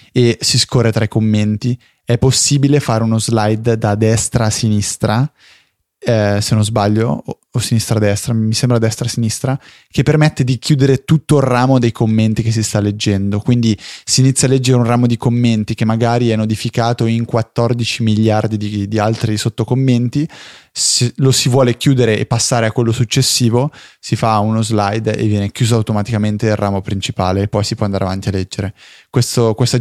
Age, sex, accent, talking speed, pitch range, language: 20-39, male, native, 175 wpm, 105-120 Hz, Italian